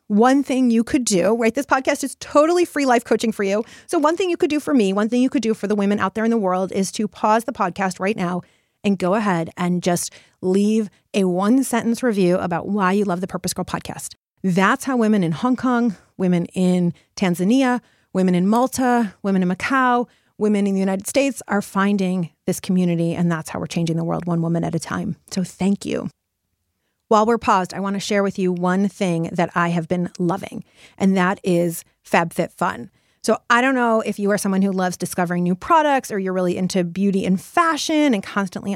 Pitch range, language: 185-250 Hz, English